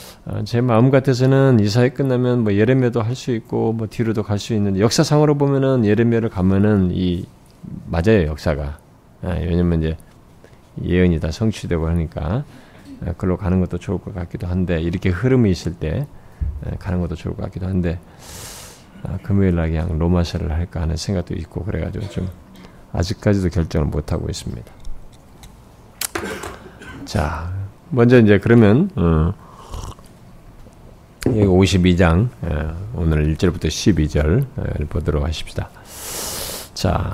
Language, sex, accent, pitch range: Korean, male, native, 85-120 Hz